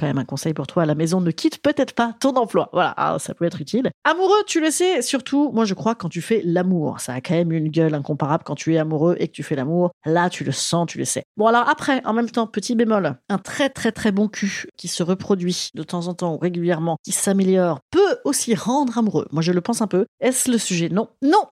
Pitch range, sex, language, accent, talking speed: 175-260 Hz, female, French, French, 260 wpm